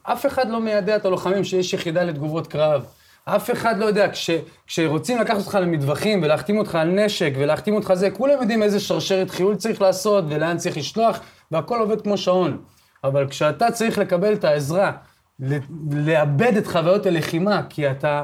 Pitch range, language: 150-205 Hz, Hebrew